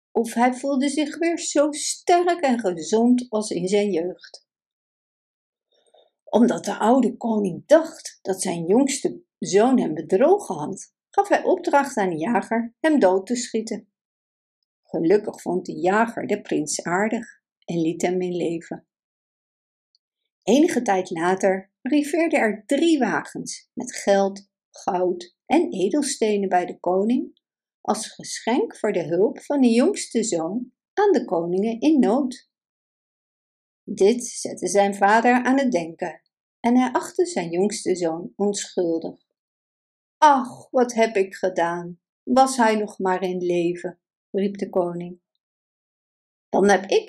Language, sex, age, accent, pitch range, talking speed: Dutch, female, 60-79, Dutch, 185-280 Hz, 135 wpm